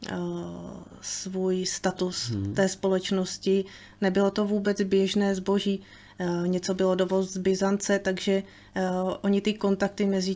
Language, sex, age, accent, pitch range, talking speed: Czech, female, 20-39, native, 180-195 Hz, 110 wpm